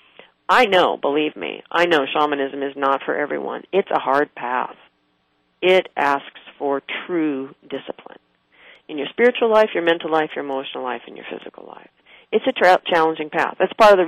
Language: English